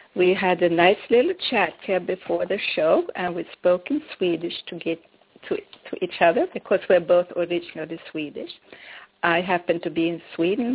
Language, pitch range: English, 170-215 Hz